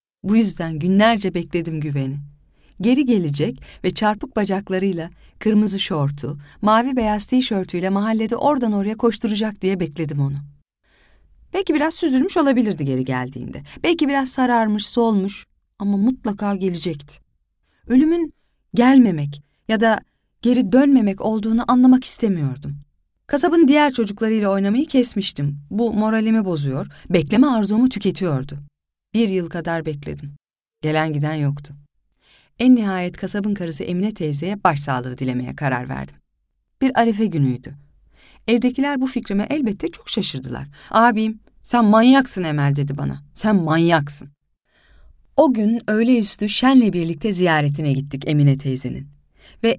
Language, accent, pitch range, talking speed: Turkish, native, 145-230 Hz, 120 wpm